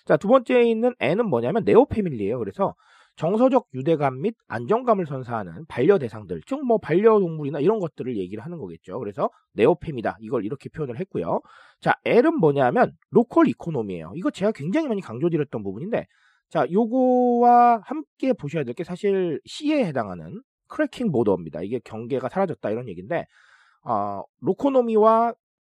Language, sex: Korean, male